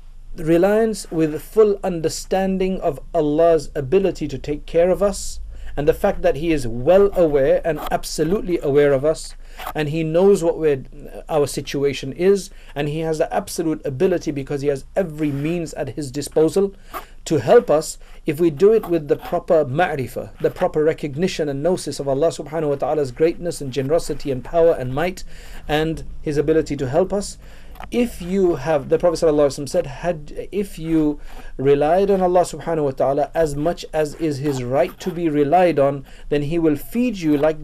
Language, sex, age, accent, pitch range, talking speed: English, male, 50-69, South African, 145-180 Hz, 175 wpm